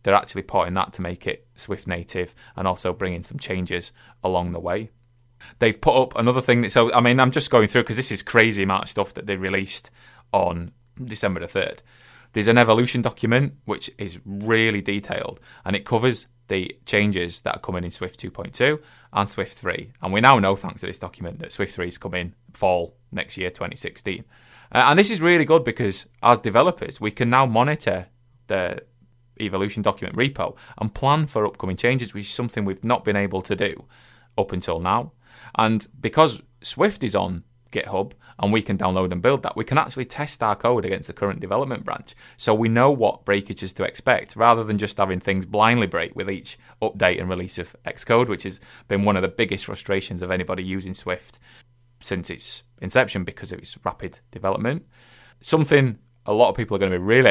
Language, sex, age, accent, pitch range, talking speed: English, male, 20-39, British, 95-120 Hz, 200 wpm